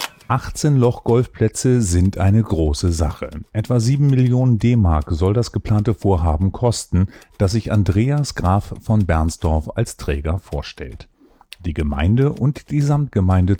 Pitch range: 85-125 Hz